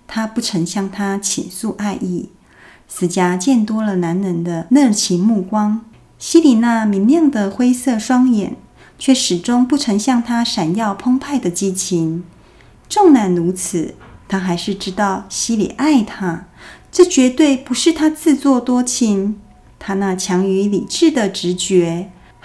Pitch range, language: 195-270 Hz, Chinese